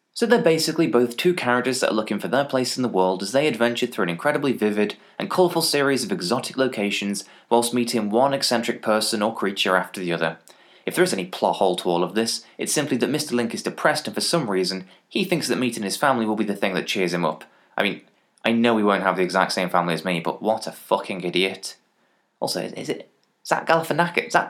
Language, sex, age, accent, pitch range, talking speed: English, male, 20-39, British, 95-130 Hz, 235 wpm